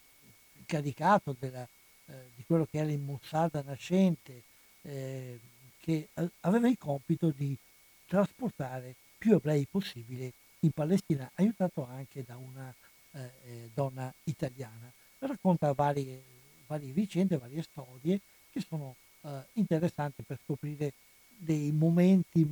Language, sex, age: Italian, male, 60-79